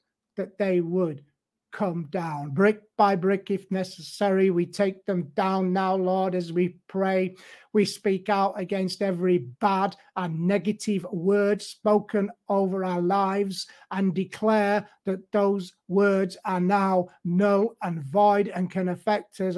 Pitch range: 180-215 Hz